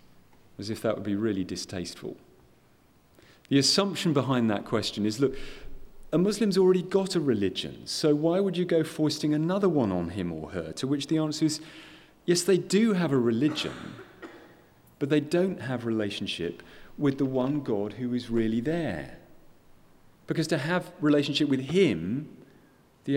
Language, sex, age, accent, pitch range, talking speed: English, male, 40-59, British, 105-155 Hz, 165 wpm